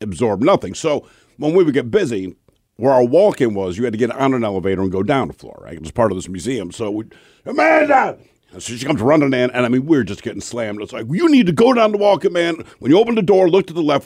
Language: English